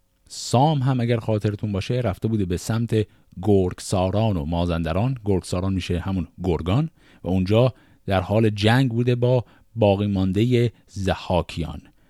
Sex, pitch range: male, 90-130 Hz